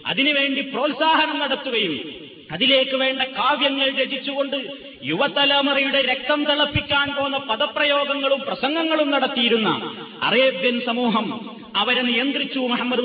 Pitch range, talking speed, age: 245-280 Hz, 85 wpm, 30-49